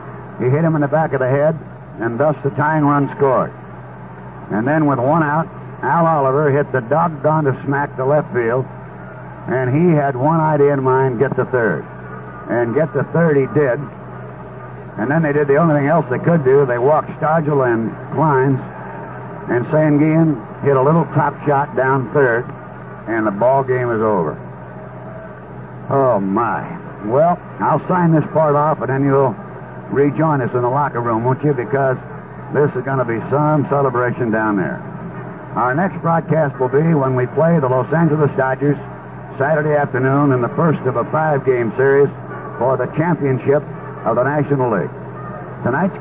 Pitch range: 125-150 Hz